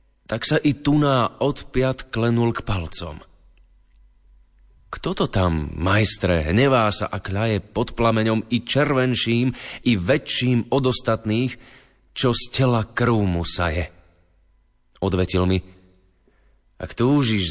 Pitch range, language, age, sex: 90-120 Hz, Slovak, 30-49, male